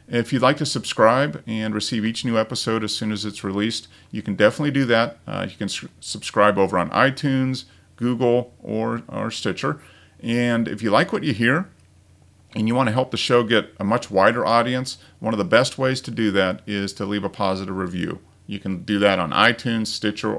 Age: 40-59